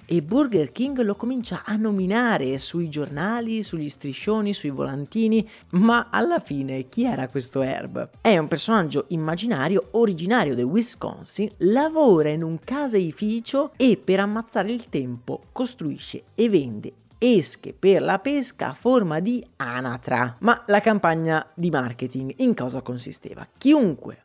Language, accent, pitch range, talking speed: Italian, native, 140-215 Hz, 140 wpm